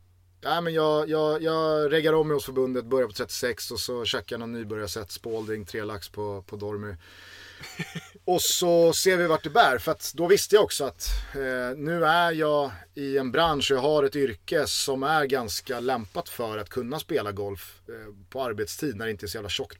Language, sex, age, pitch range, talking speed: Swedish, male, 30-49, 95-130 Hz, 210 wpm